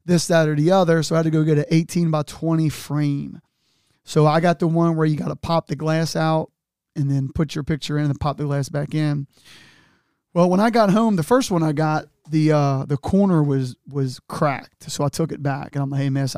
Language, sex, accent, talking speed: English, male, American, 250 wpm